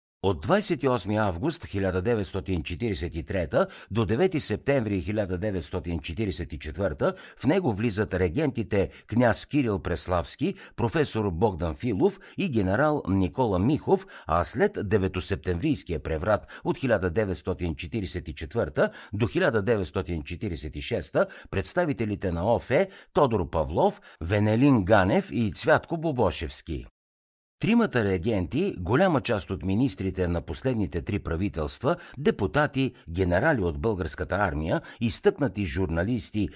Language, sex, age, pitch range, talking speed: Bulgarian, male, 60-79, 85-120 Hz, 95 wpm